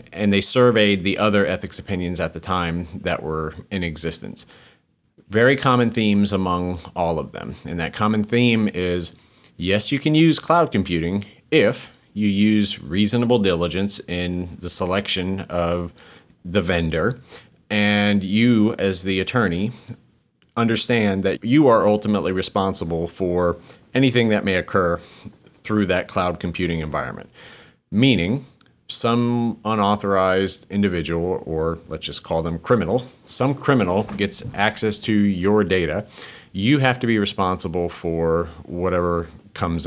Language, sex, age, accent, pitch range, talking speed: English, male, 40-59, American, 85-105 Hz, 135 wpm